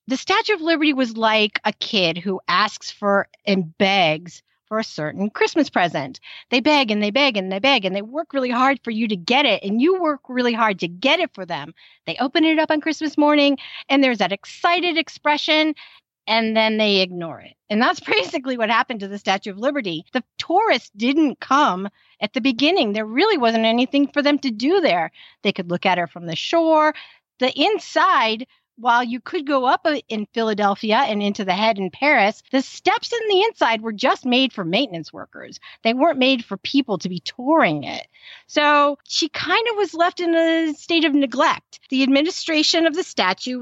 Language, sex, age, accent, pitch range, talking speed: English, female, 50-69, American, 205-305 Hz, 205 wpm